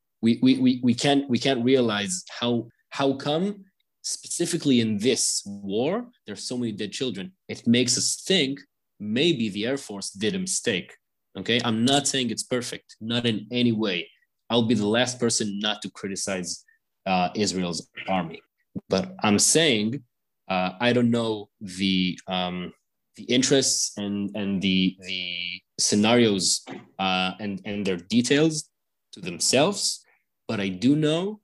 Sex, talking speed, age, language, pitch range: male, 155 wpm, 20-39, English, 100-130 Hz